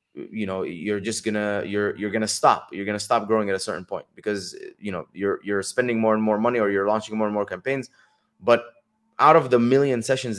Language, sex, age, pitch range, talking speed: English, male, 20-39, 105-130 Hz, 230 wpm